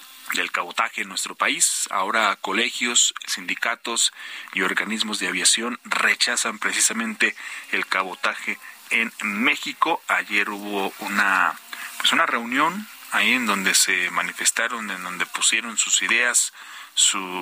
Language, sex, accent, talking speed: Spanish, male, Mexican, 120 wpm